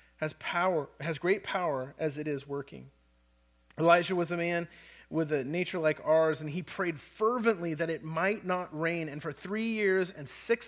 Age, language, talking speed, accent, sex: 30-49, English, 185 wpm, American, male